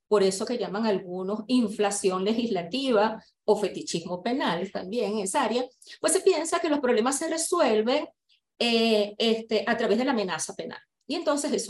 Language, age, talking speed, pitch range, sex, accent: Spanish, 30-49, 170 wpm, 205-260 Hz, female, American